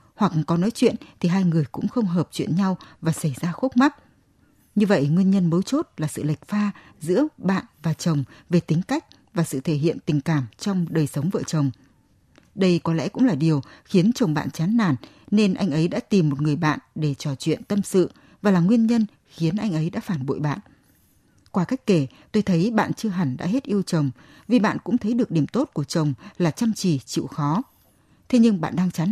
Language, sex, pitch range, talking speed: Vietnamese, female, 155-210 Hz, 230 wpm